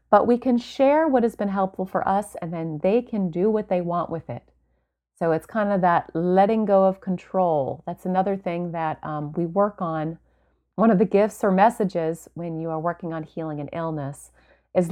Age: 30-49